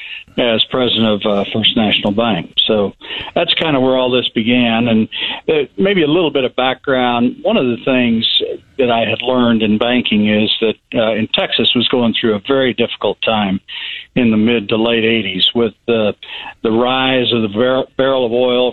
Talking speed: 190 wpm